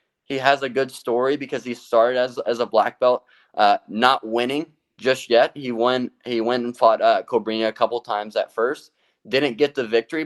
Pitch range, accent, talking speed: 105-125 Hz, American, 205 wpm